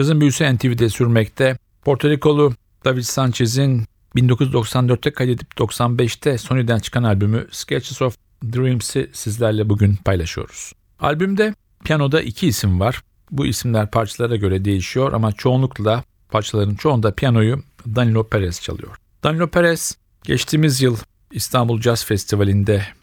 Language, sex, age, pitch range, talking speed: Turkish, male, 50-69, 100-125 Hz, 115 wpm